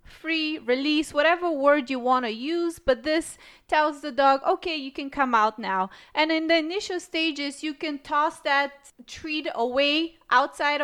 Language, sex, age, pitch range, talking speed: English, female, 30-49, 250-310 Hz, 170 wpm